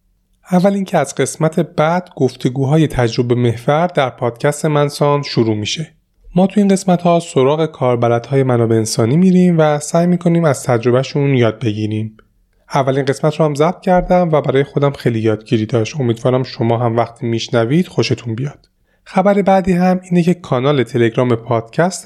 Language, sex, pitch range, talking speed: Persian, male, 115-160 Hz, 150 wpm